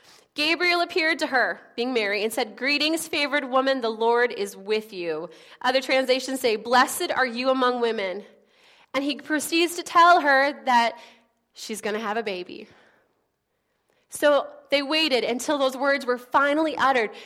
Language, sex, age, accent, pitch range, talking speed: English, female, 20-39, American, 240-310 Hz, 160 wpm